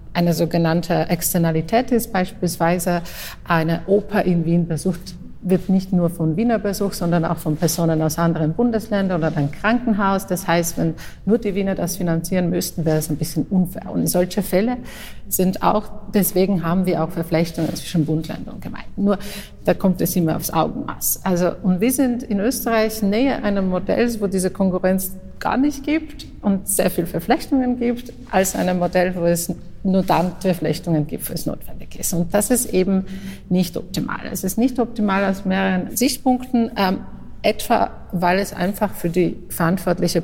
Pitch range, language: 170-205 Hz, German